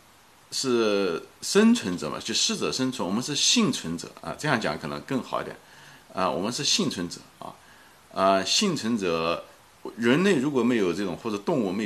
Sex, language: male, Chinese